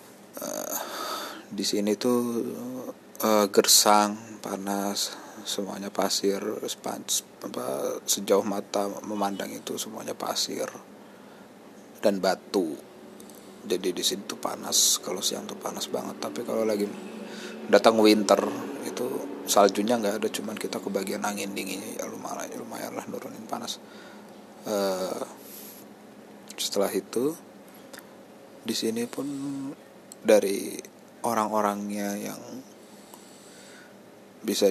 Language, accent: Indonesian, native